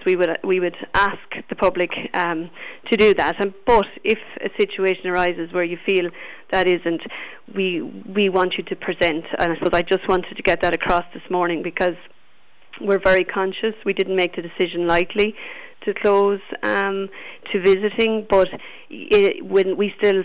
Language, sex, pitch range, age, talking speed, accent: English, female, 180-200 Hz, 30-49, 180 wpm, Irish